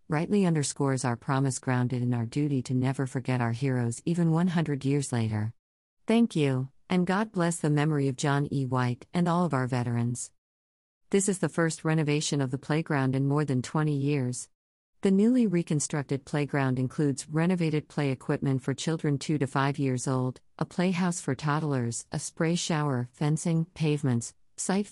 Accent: American